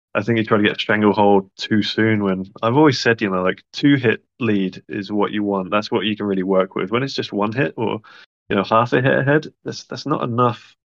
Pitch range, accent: 100-115 Hz, British